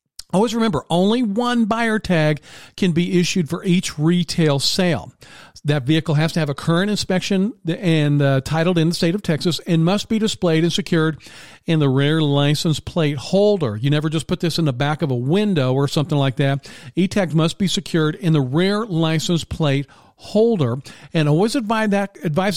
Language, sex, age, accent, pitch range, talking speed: English, male, 50-69, American, 150-195 Hz, 190 wpm